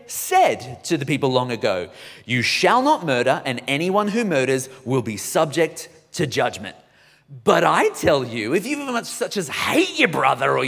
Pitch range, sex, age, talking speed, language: 145-235 Hz, male, 30-49, 180 wpm, English